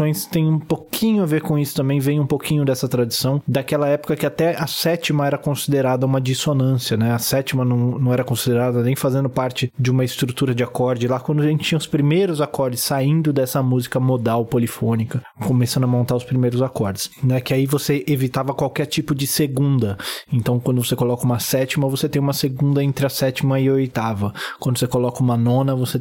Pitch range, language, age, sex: 125-145 Hz, Portuguese, 20-39, male